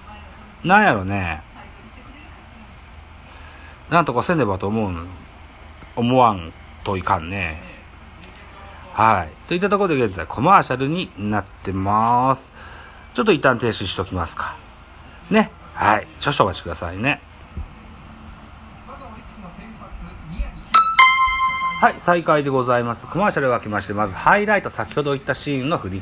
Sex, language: male, Japanese